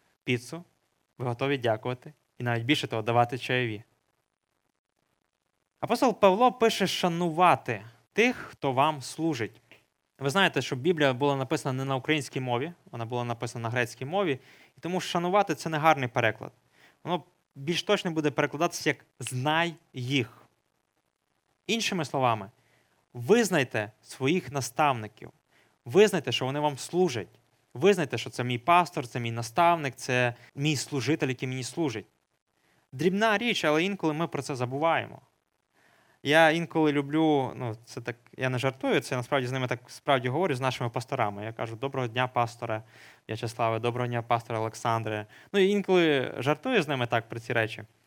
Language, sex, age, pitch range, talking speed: Ukrainian, male, 20-39, 120-165 Hz, 150 wpm